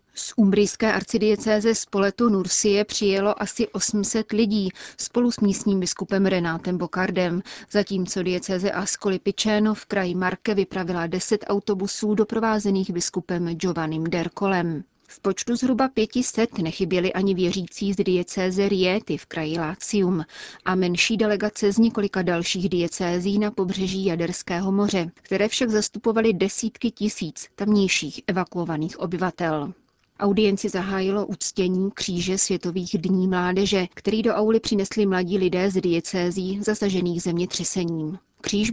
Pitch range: 180-210 Hz